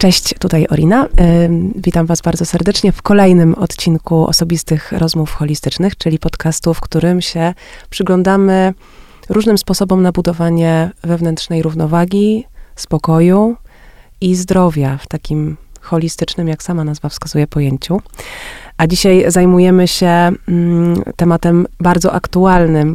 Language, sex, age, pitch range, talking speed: Polish, female, 30-49, 165-185 Hz, 110 wpm